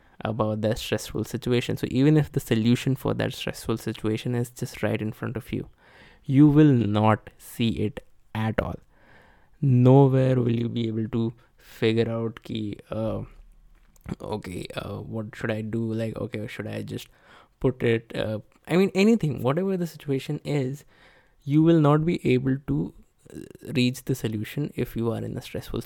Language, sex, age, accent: Hindi, male, 20-39, native